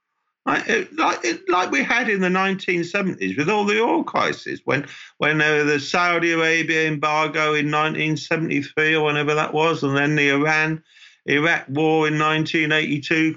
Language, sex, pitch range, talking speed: English, male, 150-210 Hz, 140 wpm